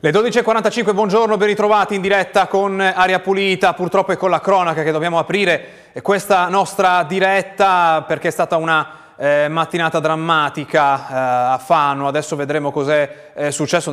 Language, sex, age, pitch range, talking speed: Italian, male, 30-49, 130-160 Hz, 155 wpm